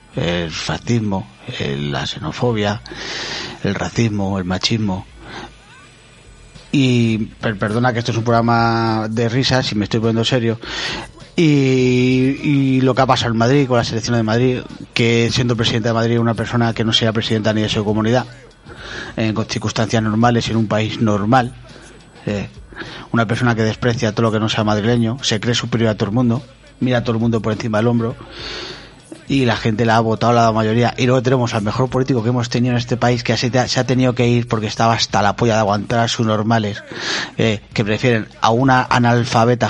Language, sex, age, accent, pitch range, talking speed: Spanish, male, 30-49, Spanish, 110-125 Hz, 190 wpm